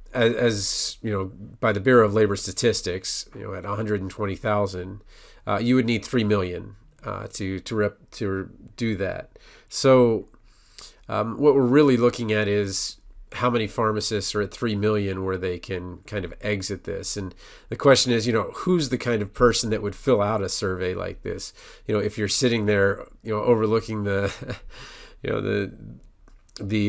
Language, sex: English, male